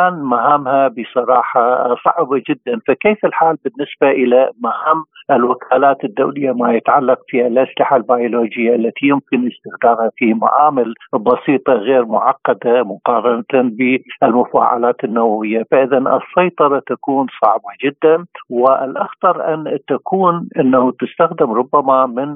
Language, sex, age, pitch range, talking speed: Arabic, male, 50-69, 120-165 Hz, 105 wpm